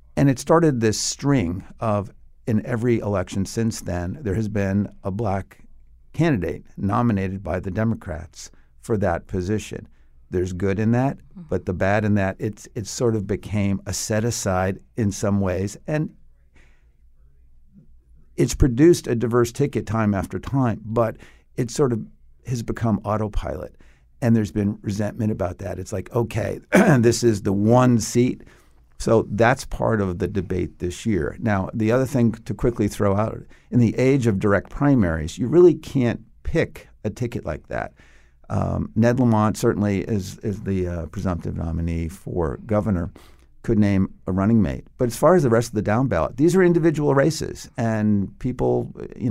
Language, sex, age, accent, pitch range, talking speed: English, male, 50-69, American, 90-120 Hz, 170 wpm